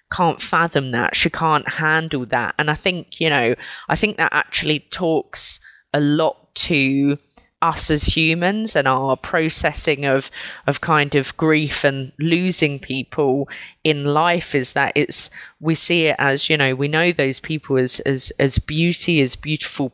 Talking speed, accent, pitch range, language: 165 wpm, British, 135-160 Hz, English